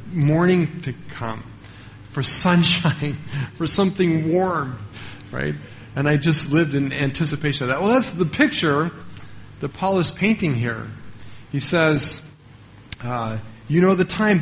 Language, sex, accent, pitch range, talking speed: English, male, American, 130-175 Hz, 135 wpm